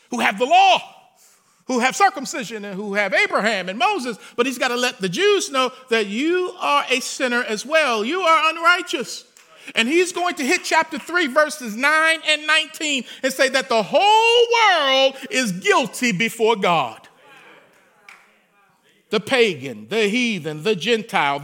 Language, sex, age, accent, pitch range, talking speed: English, male, 50-69, American, 210-300 Hz, 160 wpm